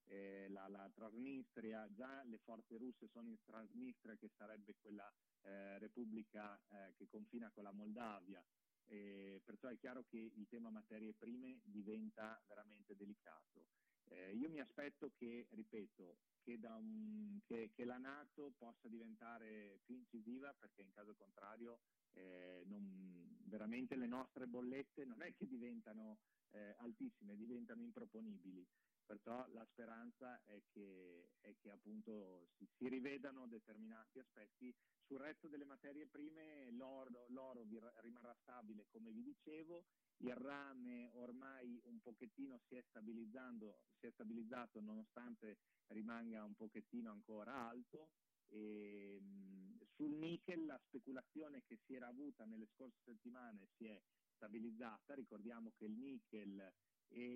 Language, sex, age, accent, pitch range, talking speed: Italian, male, 40-59, native, 105-135 Hz, 135 wpm